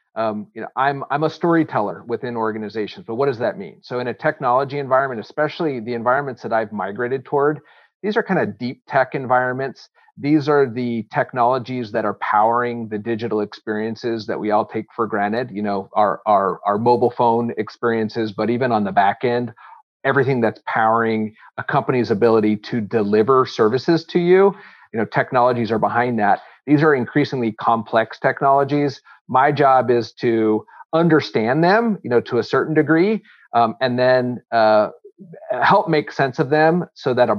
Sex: male